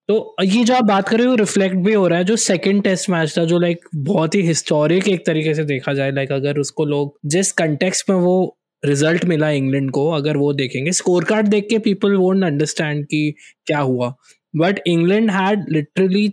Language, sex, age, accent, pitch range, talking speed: Hindi, male, 20-39, native, 160-205 Hz, 200 wpm